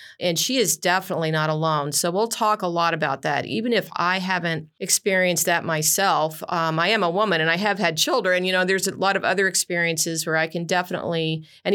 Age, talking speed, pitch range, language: 40-59, 220 wpm, 165-190 Hz, English